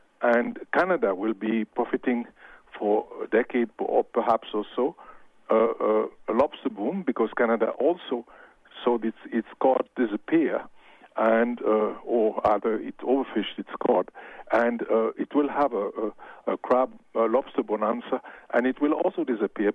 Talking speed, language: 150 wpm, English